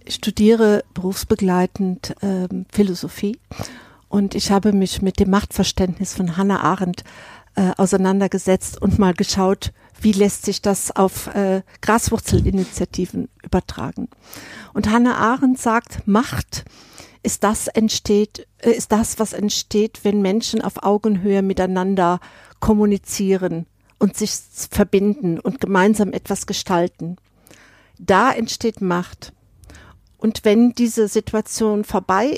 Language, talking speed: German, 115 wpm